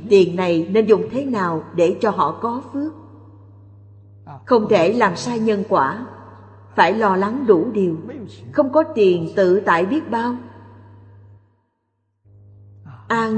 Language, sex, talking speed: Vietnamese, female, 135 wpm